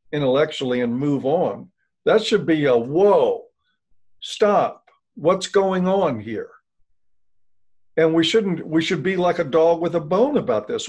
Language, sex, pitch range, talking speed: English, male, 145-195 Hz, 155 wpm